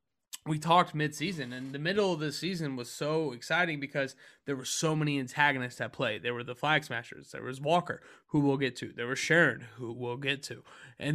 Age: 20-39